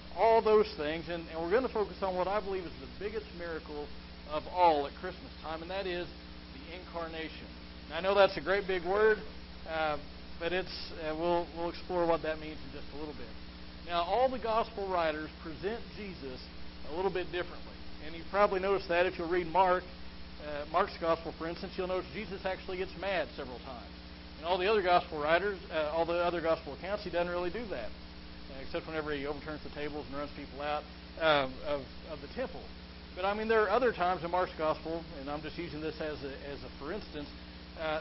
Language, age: English, 40-59